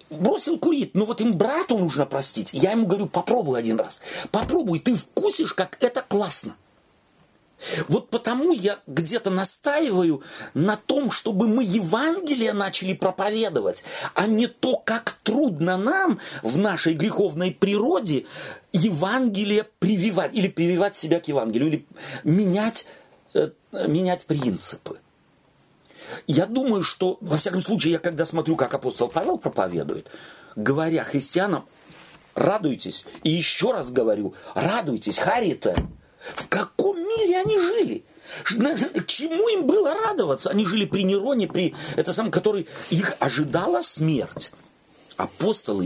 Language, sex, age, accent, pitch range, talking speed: Russian, male, 40-59, native, 165-235 Hz, 120 wpm